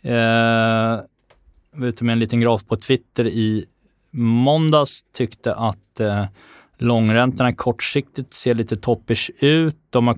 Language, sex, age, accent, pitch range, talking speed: Swedish, male, 20-39, native, 105-125 Hz, 130 wpm